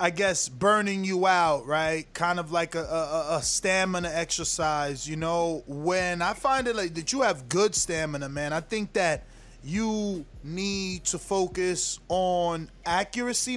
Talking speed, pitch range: 160 wpm, 165-200 Hz